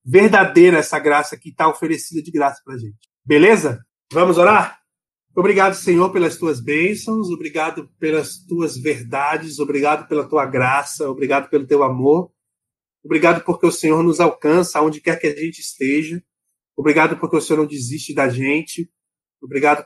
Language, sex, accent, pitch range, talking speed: Portuguese, male, Brazilian, 145-175 Hz, 155 wpm